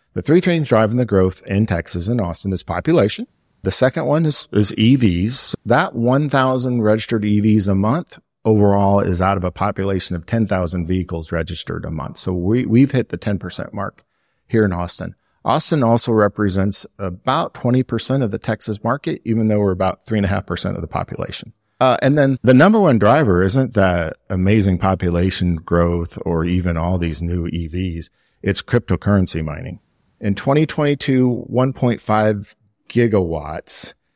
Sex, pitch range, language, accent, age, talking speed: male, 90-120 Hz, English, American, 50-69, 155 wpm